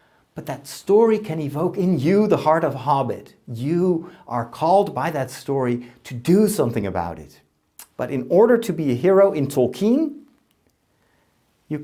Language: English